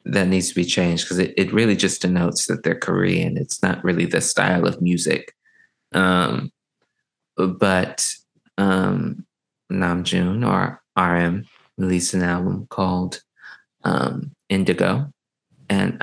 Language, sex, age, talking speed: English, male, 20-39, 125 wpm